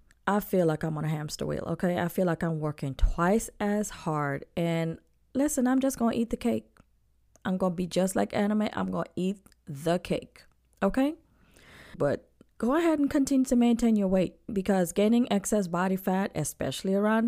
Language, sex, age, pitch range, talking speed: English, female, 20-39, 165-215 Hz, 195 wpm